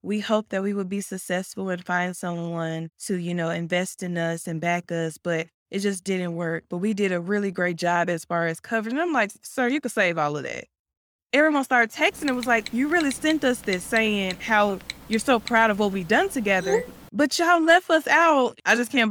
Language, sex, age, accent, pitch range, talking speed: English, female, 20-39, American, 165-225 Hz, 230 wpm